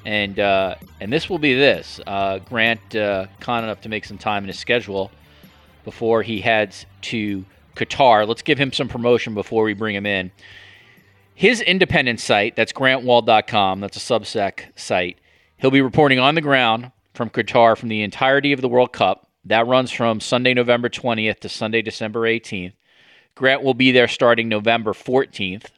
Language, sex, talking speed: English, male, 175 wpm